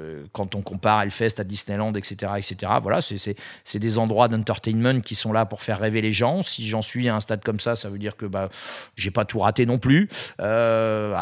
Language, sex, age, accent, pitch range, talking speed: French, male, 40-59, French, 105-120 Hz, 240 wpm